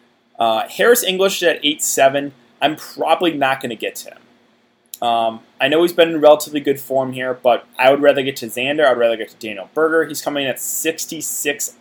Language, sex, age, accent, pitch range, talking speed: English, male, 20-39, American, 120-155 Hz, 210 wpm